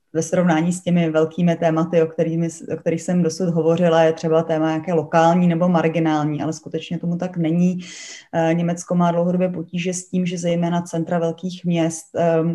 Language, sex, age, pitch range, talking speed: Czech, female, 20-39, 160-175 Hz, 170 wpm